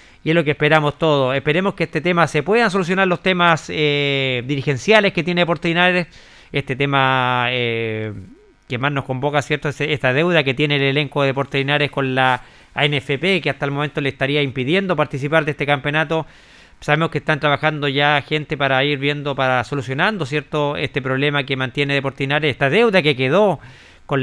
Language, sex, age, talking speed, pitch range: Spanish, male, 30-49, 180 wpm, 130-160 Hz